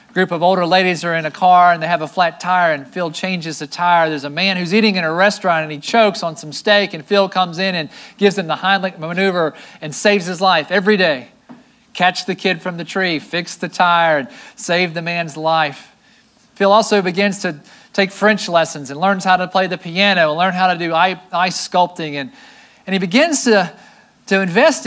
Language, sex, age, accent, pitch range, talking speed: English, male, 40-59, American, 160-195 Hz, 220 wpm